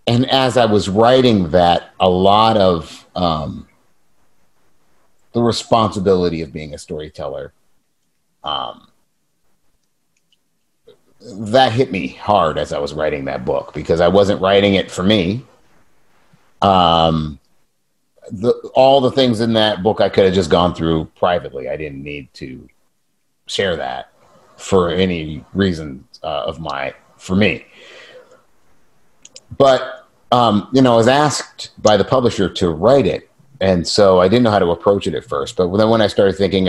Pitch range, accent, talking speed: 85-115 Hz, American, 150 wpm